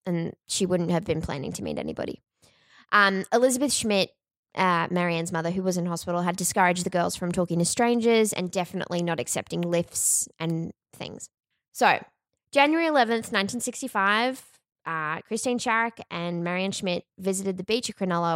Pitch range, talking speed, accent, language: 175-220 Hz, 165 wpm, Australian, English